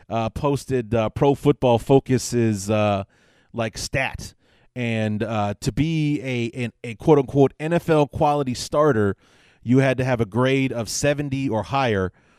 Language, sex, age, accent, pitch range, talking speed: English, male, 30-49, American, 105-130 Hz, 150 wpm